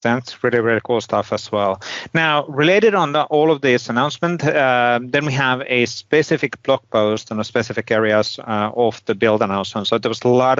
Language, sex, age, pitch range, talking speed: English, male, 30-49, 105-130 Hz, 210 wpm